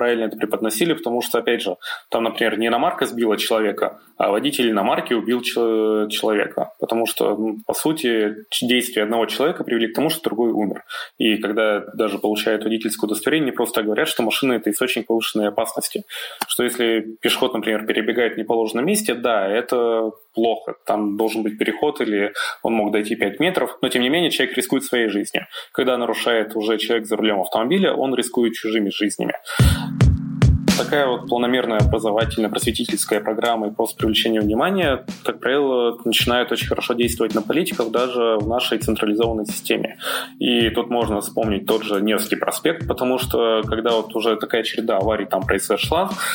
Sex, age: male, 20-39